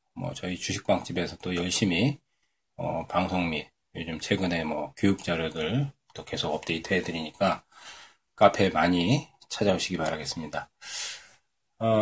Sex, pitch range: male, 90-130 Hz